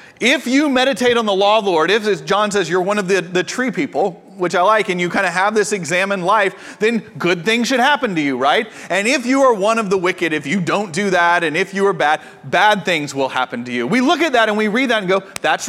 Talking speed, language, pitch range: 280 wpm, English, 185-245 Hz